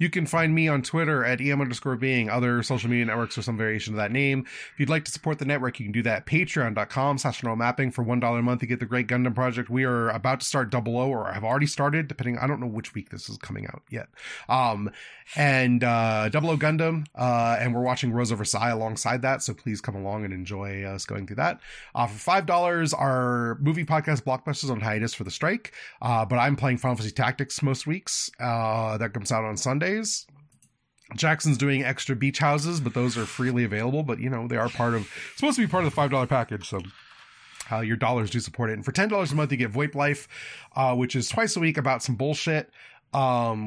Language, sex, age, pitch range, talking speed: English, male, 20-39, 115-145 Hz, 240 wpm